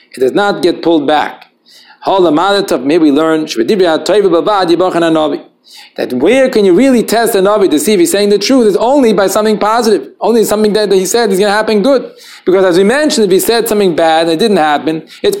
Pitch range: 160-240 Hz